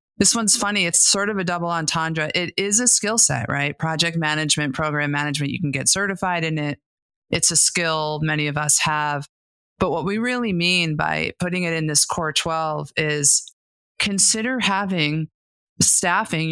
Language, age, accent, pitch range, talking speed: English, 30-49, American, 150-170 Hz, 175 wpm